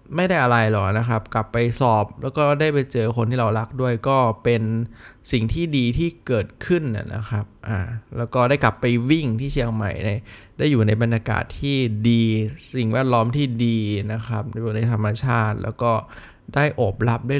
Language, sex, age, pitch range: Thai, male, 20-39, 110-140 Hz